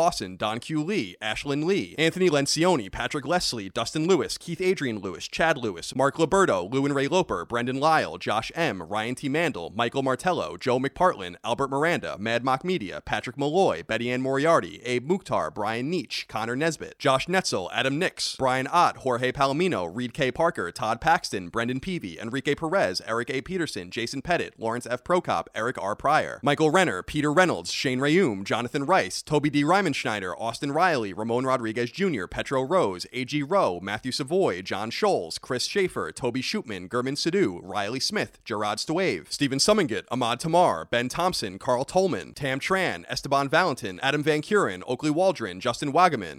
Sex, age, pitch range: male, 30-49, 125-165 Hz